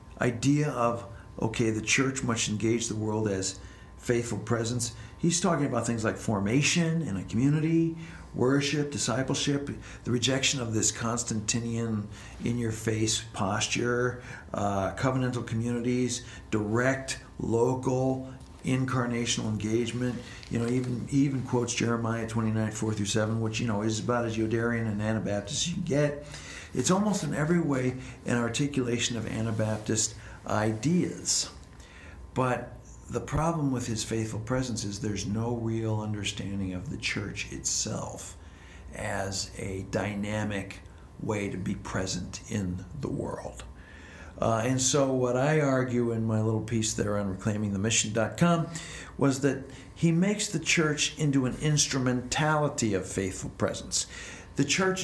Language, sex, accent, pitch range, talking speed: English, male, American, 105-130 Hz, 135 wpm